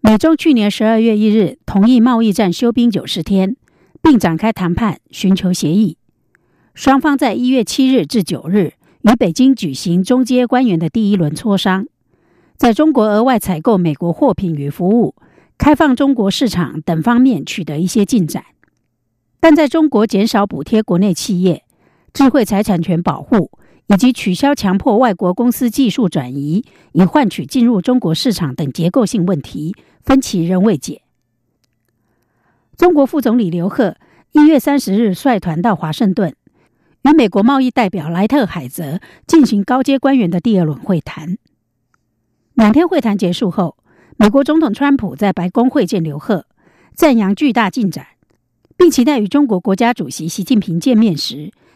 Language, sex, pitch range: German, female, 175-255 Hz